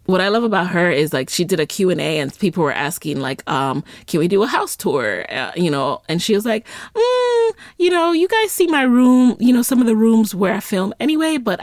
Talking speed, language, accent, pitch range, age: 255 wpm, English, American, 170-255 Hz, 30-49